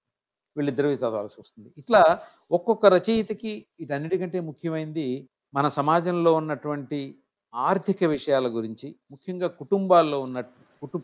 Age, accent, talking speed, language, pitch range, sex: 50-69, native, 110 wpm, Telugu, 125-165 Hz, male